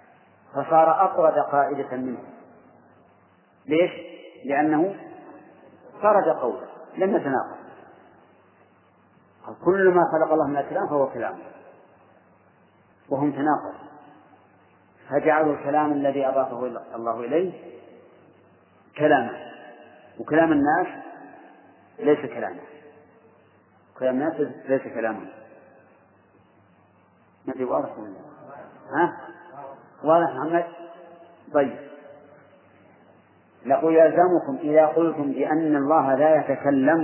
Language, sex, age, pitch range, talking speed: Arabic, male, 40-59, 140-165 Hz, 80 wpm